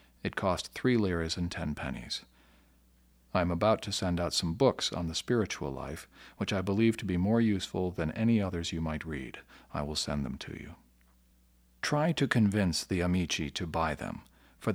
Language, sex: English, male